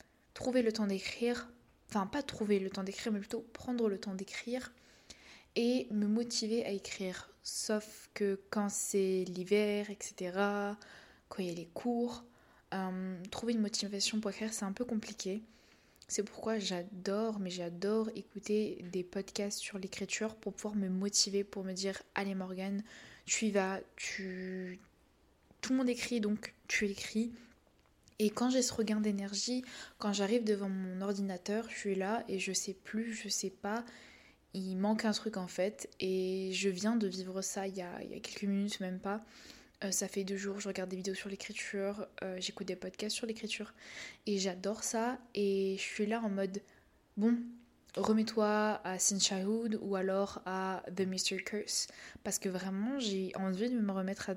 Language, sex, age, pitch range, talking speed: French, female, 20-39, 190-220 Hz, 180 wpm